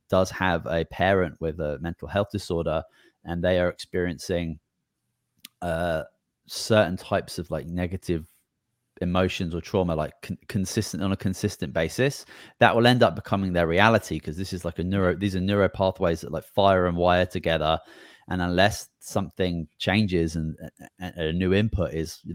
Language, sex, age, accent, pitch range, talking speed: English, male, 20-39, British, 85-100 Hz, 170 wpm